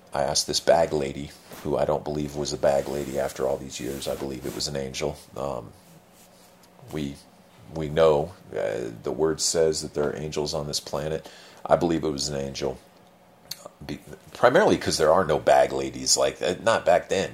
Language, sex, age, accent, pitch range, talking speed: English, male, 40-59, American, 75-95 Hz, 195 wpm